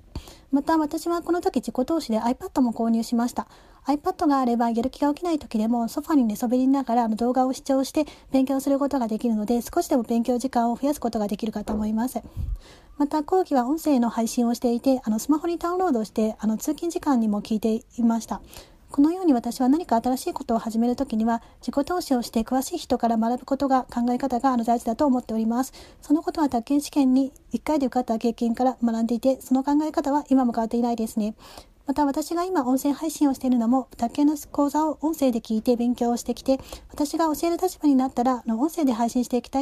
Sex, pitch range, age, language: female, 235-290 Hz, 30-49, Japanese